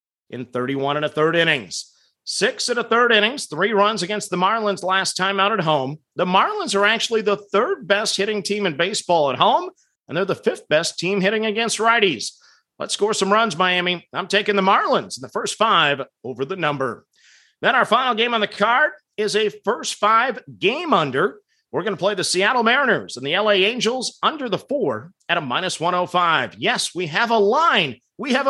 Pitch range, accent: 180-225 Hz, American